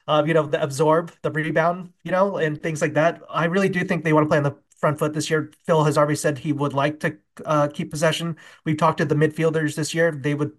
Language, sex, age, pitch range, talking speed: English, male, 20-39, 150-175 Hz, 265 wpm